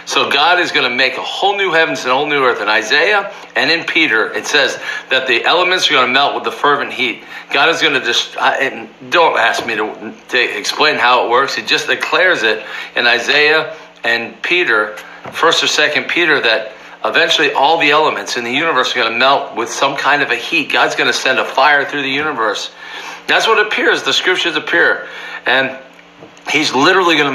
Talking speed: 215 wpm